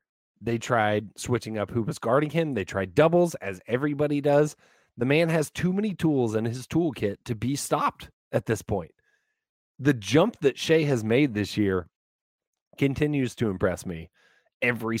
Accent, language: American, English